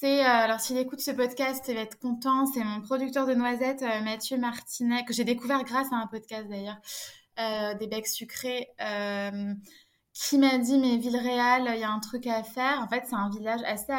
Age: 20-39